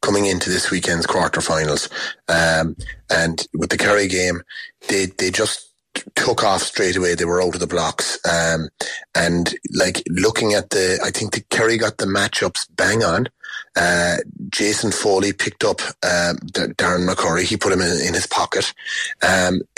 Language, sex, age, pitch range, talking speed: English, male, 30-49, 90-115 Hz, 165 wpm